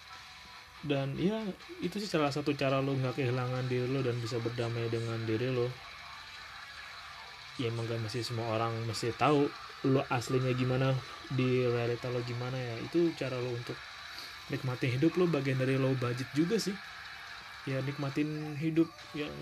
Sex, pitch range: male, 125-150 Hz